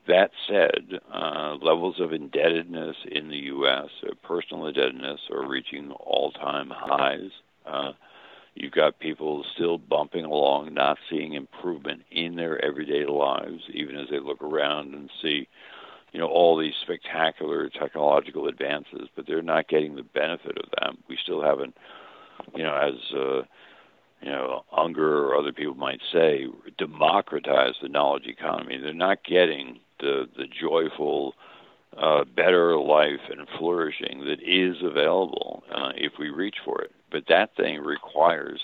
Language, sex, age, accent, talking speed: English, male, 60-79, American, 150 wpm